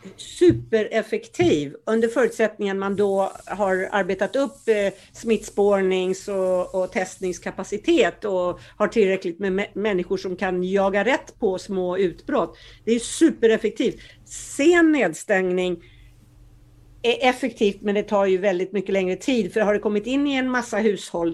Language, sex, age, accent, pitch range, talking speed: Swedish, female, 60-79, native, 195-255 Hz, 140 wpm